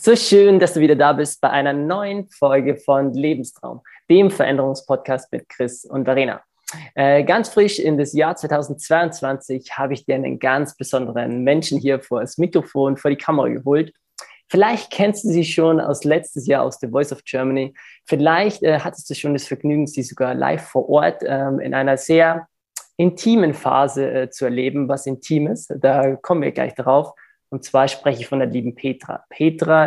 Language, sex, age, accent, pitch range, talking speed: German, male, 20-39, German, 135-160 Hz, 185 wpm